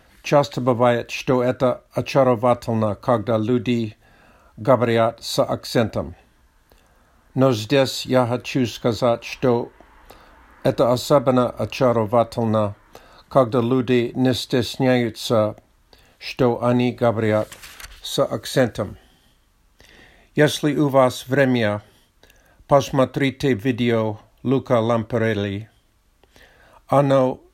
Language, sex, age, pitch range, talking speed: Russian, male, 50-69, 110-135 Hz, 80 wpm